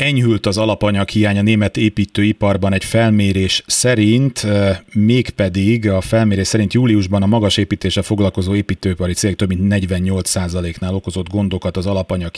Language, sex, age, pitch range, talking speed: Hungarian, male, 30-49, 100-120 Hz, 130 wpm